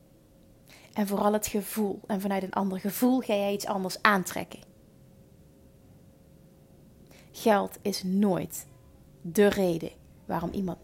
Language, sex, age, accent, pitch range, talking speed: Dutch, female, 30-49, Dutch, 185-250 Hz, 115 wpm